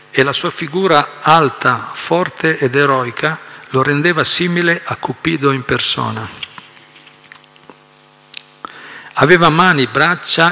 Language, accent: Italian, native